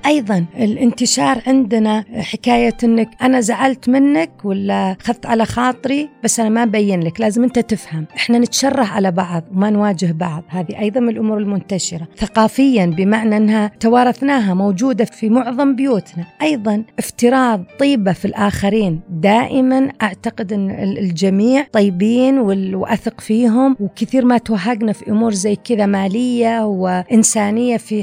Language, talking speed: Arabic, 135 wpm